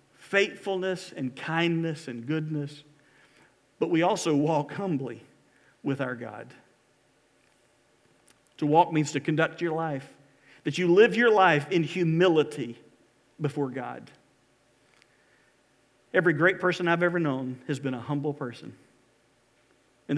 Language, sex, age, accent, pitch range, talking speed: English, male, 50-69, American, 140-170 Hz, 120 wpm